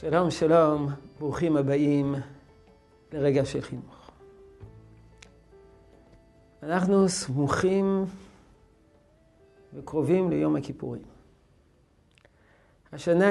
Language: Hebrew